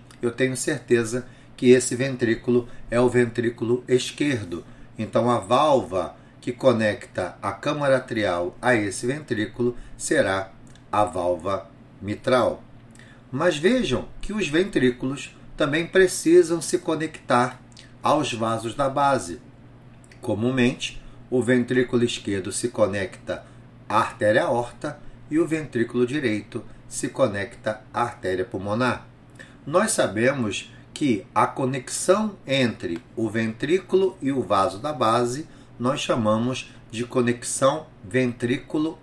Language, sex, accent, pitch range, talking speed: Portuguese, male, Brazilian, 120-135 Hz, 115 wpm